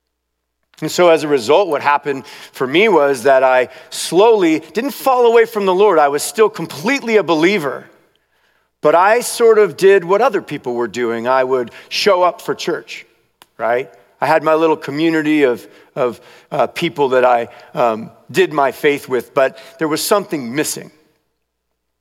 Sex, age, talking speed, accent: male, 40-59, 170 wpm, American